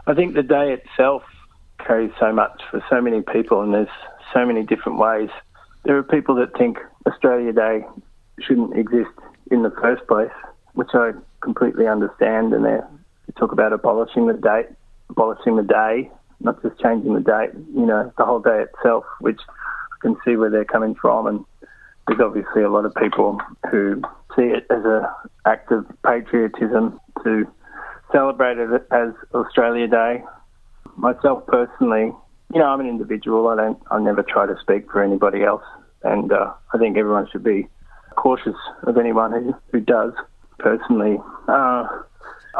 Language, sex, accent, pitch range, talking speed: English, male, Australian, 110-135 Hz, 165 wpm